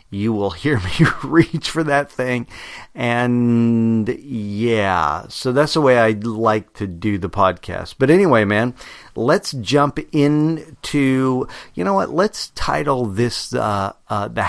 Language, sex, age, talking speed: English, male, 50-69, 145 wpm